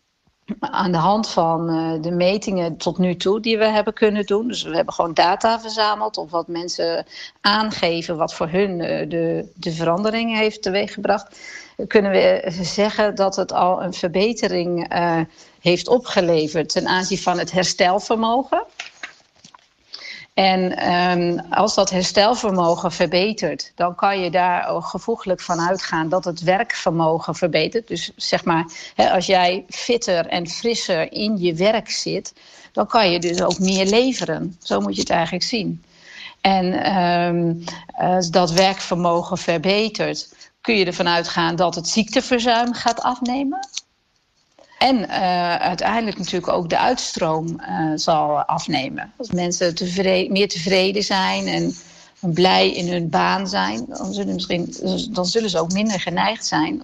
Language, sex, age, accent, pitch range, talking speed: Dutch, female, 50-69, Dutch, 170-210 Hz, 140 wpm